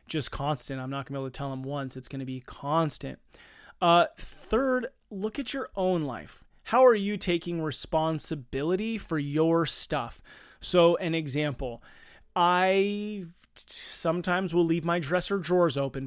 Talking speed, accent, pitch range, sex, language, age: 155 wpm, American, 145-175 Hz, male, English, 30-49